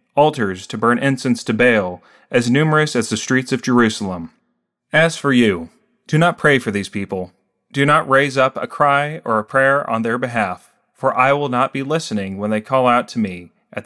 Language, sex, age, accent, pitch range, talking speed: English, male, 30-49, American, 105-145 Hz, 205 wpm